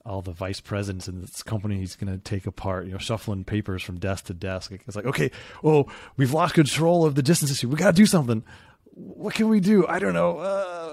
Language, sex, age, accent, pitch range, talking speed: English, male, 30-49, American, 90-115 Hz, 235 wpm